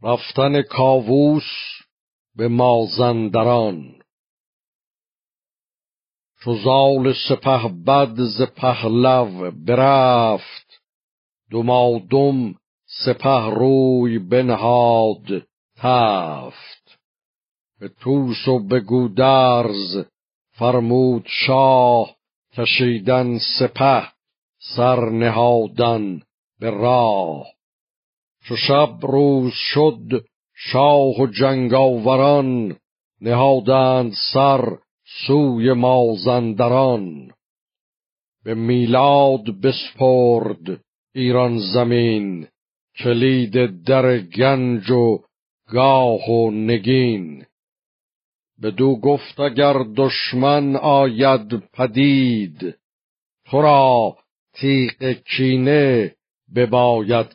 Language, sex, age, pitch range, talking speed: Persian, male, 60-79, 115-135 Hz, 65 wpm